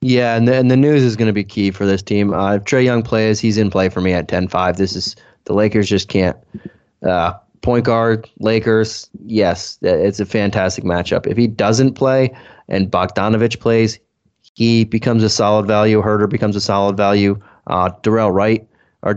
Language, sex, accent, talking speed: English, male, American, 195 wpm